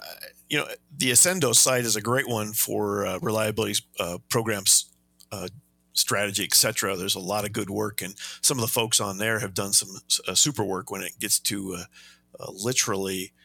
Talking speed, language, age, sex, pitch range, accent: 190 wpm, English, 50-69, male, 90-115 Hz, American